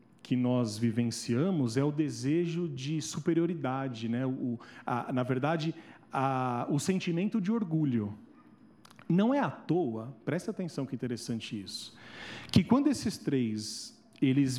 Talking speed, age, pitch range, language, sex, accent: 135 wpm, 40-59, 125-170 Hz, Spanish, male, Brazilian